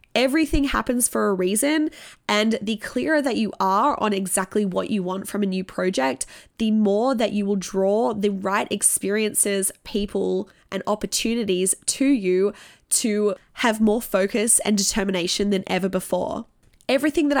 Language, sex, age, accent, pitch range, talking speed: English, female, 20-39, Australian, 195-230 Hz, 155 wpm